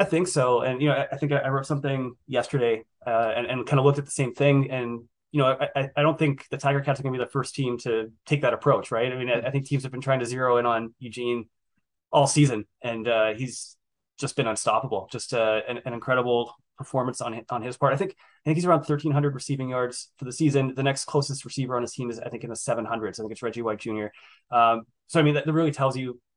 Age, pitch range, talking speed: 20-39, 120-140 Hz, 270 wpm